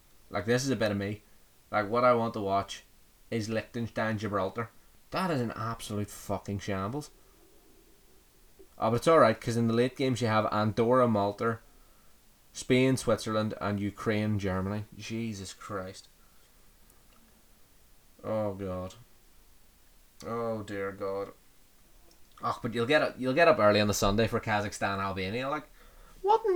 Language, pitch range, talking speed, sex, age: English, 100-125 Hz, 140 wpm, male, 20-39